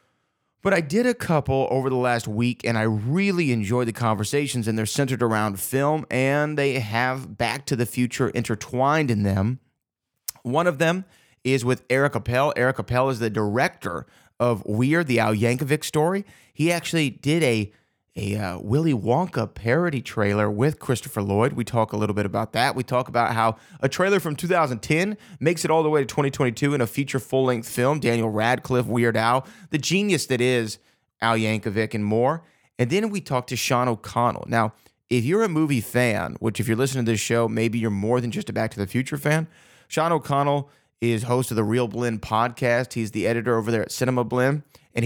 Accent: American